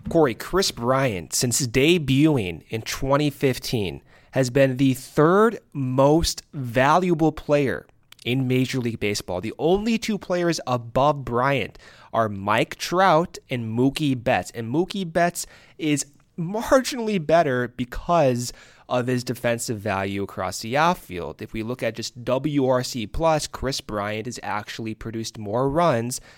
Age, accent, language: 20-39, American, English